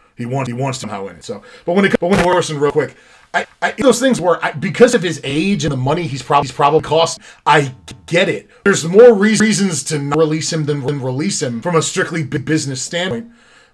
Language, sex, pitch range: English, male, 135-170 Hz